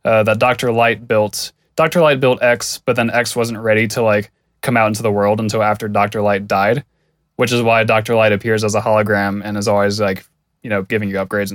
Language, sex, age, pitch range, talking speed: English, male, 20-39, 105-125 Hz, 230 wpm